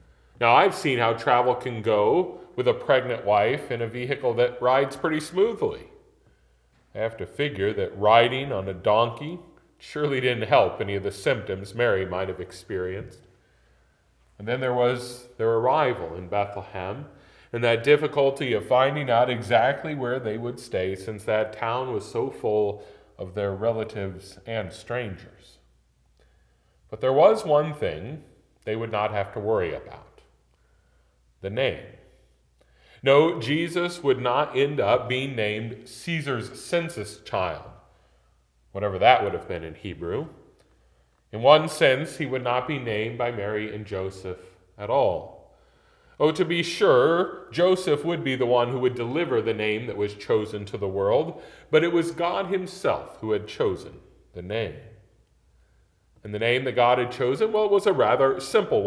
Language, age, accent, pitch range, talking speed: English, 40-59, American, 100-140 Hz, 160 wpm